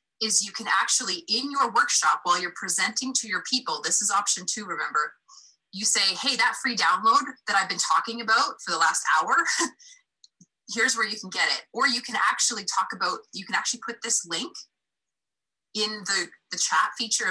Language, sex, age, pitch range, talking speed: English, female, 20-39, 180-260 Hz, 195 wpm